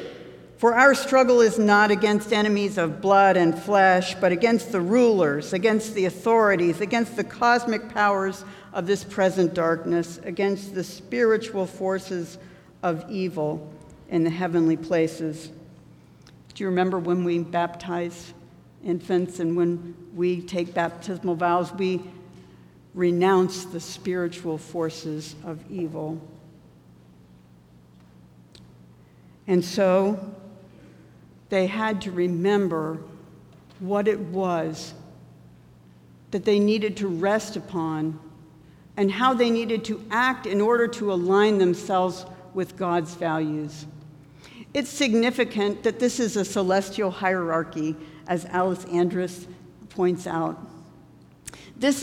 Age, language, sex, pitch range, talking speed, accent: 60-79, English, female, 165-205 Hz, 115 wpm, American